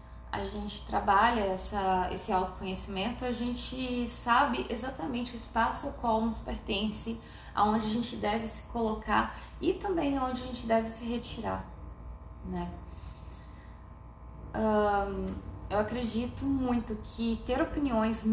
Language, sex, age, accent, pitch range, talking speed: Portuguese, female, 20-39, Brazilian, 185-235 Hz, 125 wpm